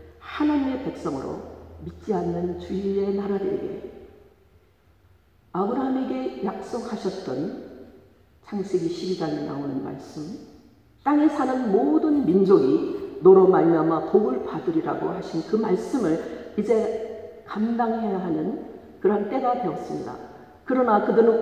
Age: 50-69